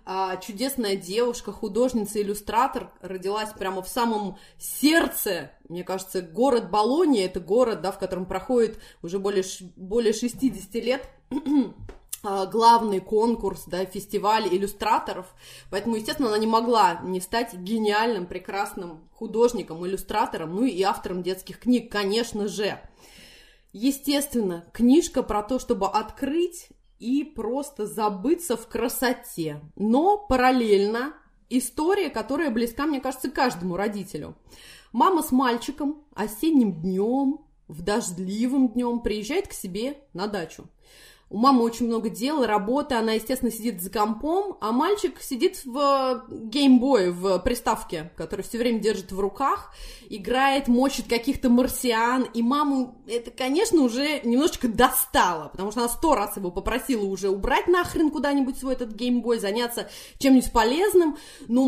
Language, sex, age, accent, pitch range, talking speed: Russian, female, 20-39, native, 205-275 Hz, 130 wpm